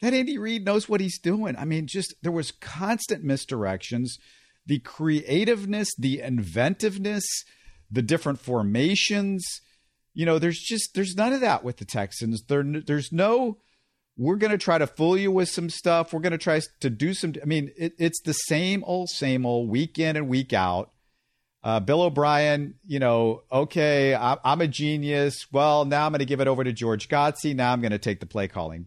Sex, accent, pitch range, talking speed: male, American, 125-170 Hz, 190 wpm